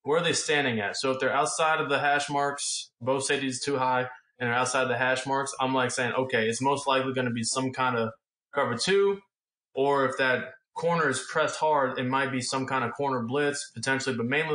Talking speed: 240 wpm